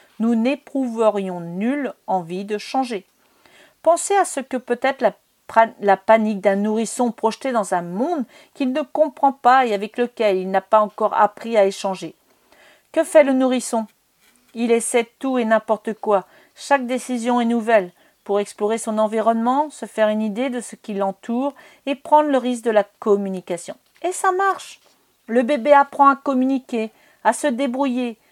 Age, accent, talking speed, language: 40-59, French, 165 wpm, French